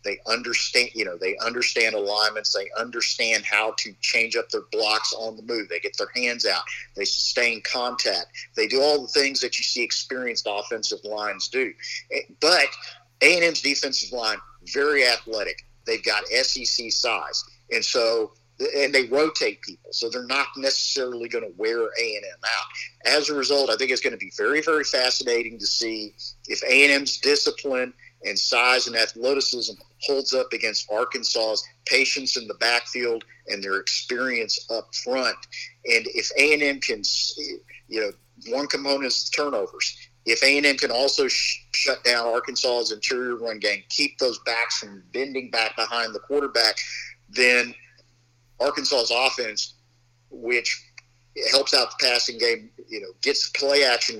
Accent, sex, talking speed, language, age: American, male, 155 wpm, English, 50-69